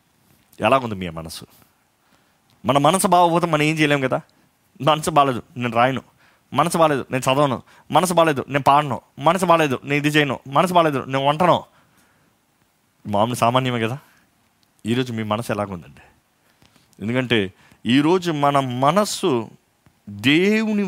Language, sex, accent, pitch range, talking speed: Telugu, male, native, 110-155 Hz, 120 wpm